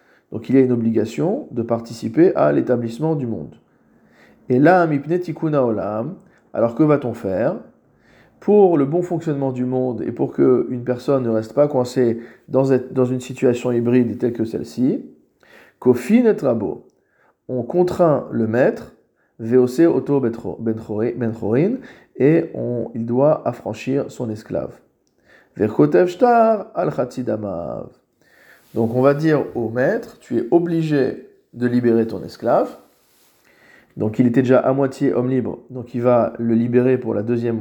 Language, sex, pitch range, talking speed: French, male, 115-140 Hz, 140 wpm